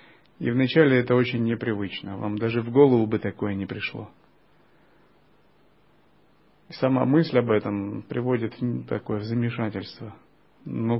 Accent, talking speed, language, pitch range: native, 130 wpm, Russian, 105-125 Hz